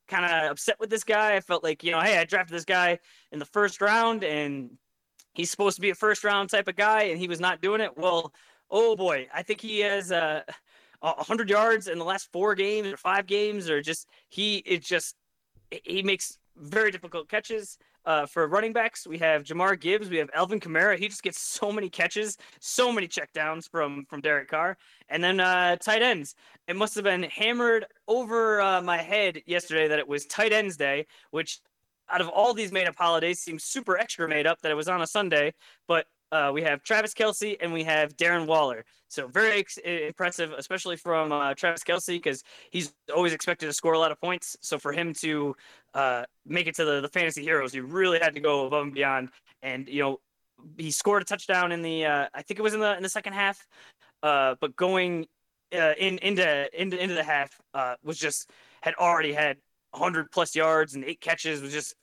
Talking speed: 220 wpm